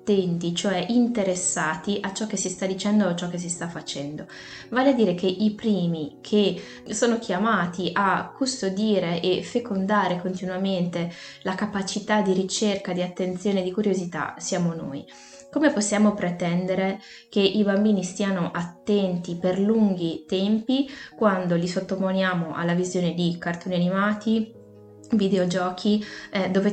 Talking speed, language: 140 wpm, Italian